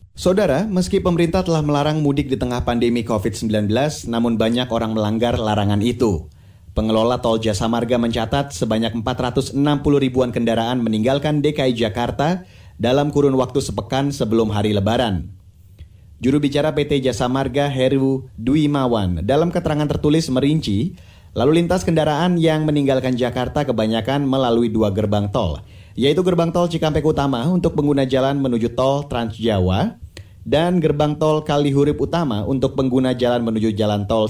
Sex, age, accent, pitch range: male, 30-49, native, 115-150 Hz